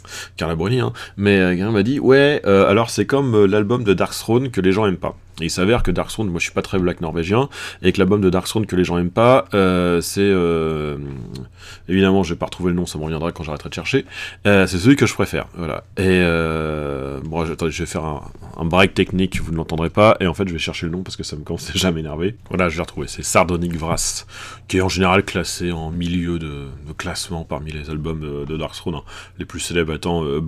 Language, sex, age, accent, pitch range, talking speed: French, male, 30-49, French, 85-105 Hz, 250 wpm